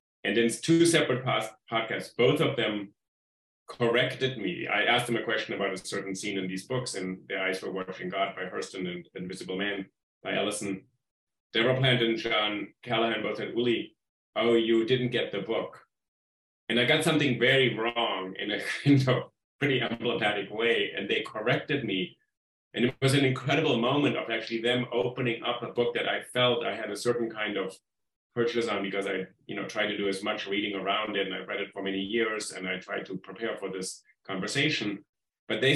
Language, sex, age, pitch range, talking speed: English, male, 30-49, 100-125 Hz, 200 wpm